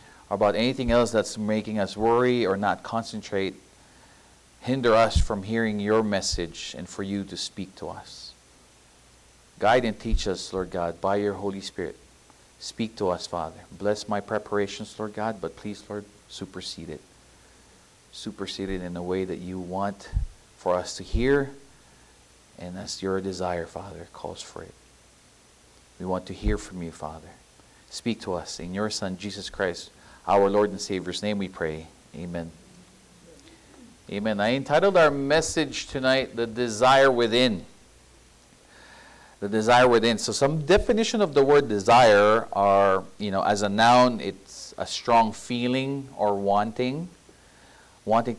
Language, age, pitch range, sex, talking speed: English, 40-59, 95-115 Hz, male, 150 wpm